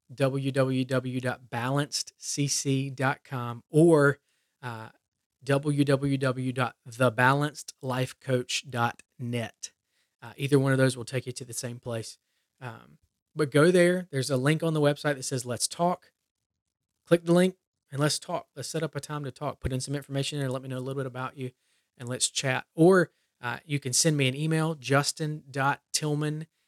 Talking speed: 155 wpm